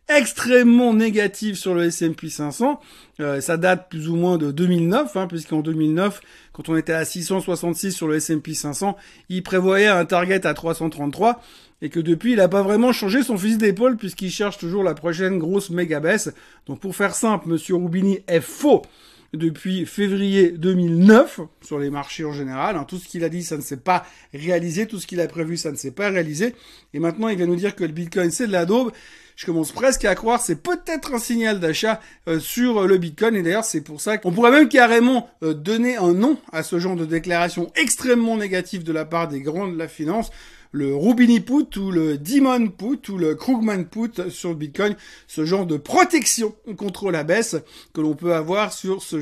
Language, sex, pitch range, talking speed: French, male, 165-220 Hz, 205 wpm